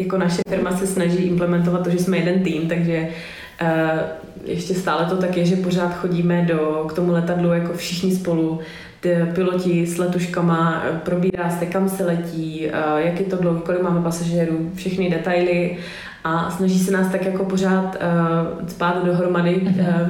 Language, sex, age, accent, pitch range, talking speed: Czech, female, 20-39, native, 170-190 Hz, 155 wpm